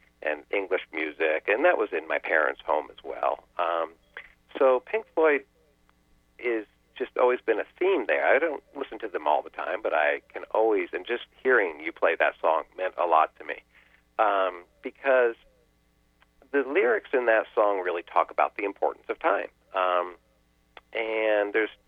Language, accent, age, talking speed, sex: English, American, 50-69, 175 wpm, male